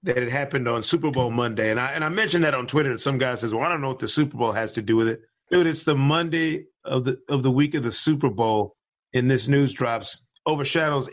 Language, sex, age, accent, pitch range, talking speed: English, male, 30-49, American, 125-155 Hz, 270 wpm